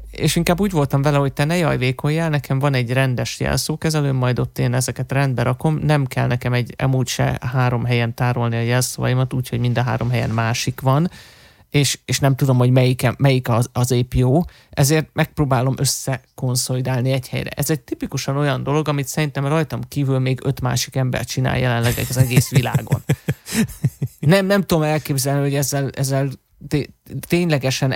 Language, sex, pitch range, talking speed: Hungarian, male, 125-145 Hz, 175 wpm